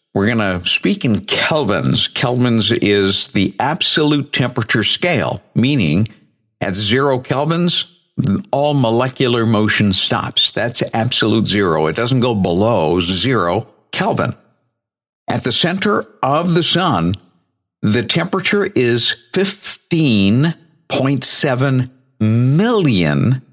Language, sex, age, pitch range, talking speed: English, male, 60-79, 105-145 Hz, 100 wpm